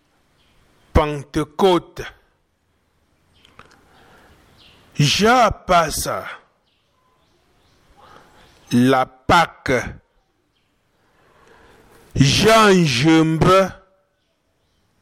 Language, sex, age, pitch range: French, male, 60-79, 120-180 Hz